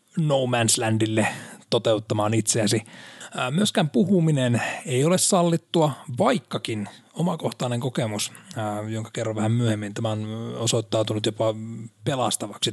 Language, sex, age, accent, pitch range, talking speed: Finnish, male, 30-49, native, 110-135 Hz, 105 wpm